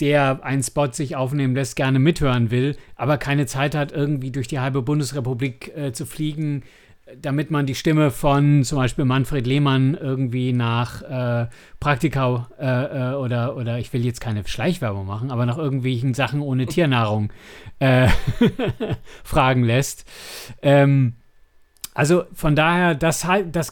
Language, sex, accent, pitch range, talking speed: German, male, German, 130-150 Hz, 145 wpm